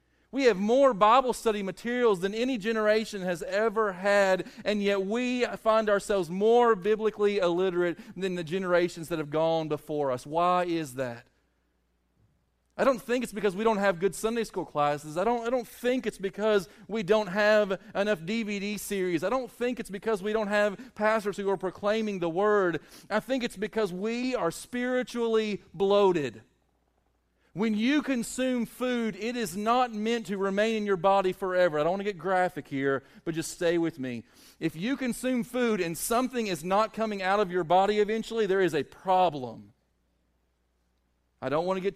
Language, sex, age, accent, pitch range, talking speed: English, male, 40-59, American, 170-220 Hz, 180 wpm